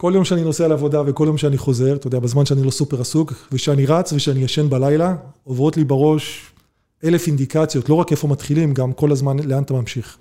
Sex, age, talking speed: male, 30-49, 210 wpm